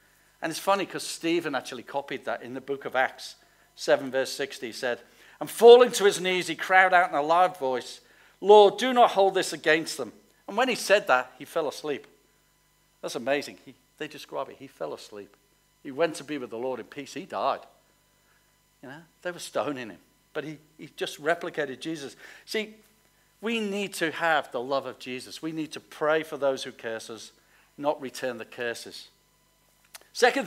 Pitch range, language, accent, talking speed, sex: 140-205 Hz, English, British, 195 wpm, male